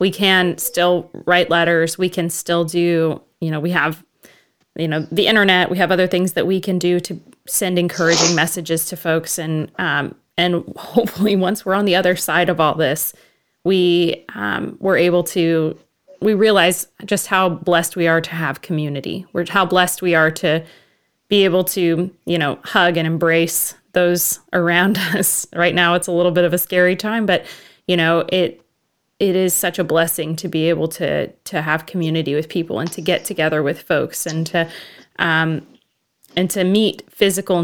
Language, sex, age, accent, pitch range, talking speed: English, female, 20-39, American, 165-185 Hz, 185 wpm